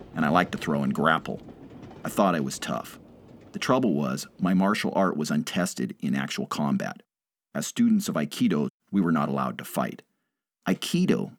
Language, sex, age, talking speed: English, male, 40-59, 180 wpm